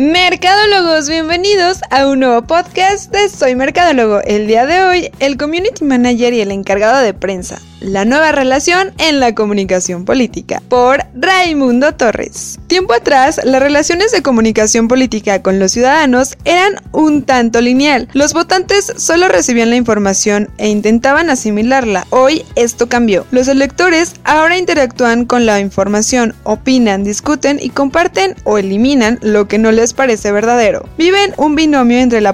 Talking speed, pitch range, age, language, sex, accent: 150 wpm, 215-295 Hz, 20-39, Spanish, female, Mexican